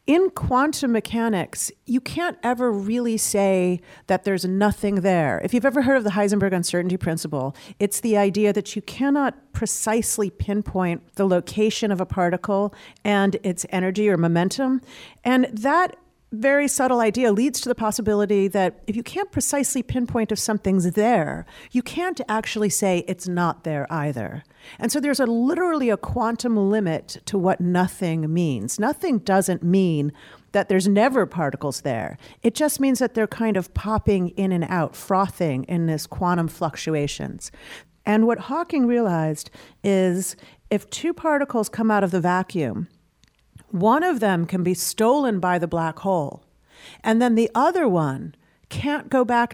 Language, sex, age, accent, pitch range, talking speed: English, female, 50-69, American, 180-235 Hz, 160 wpm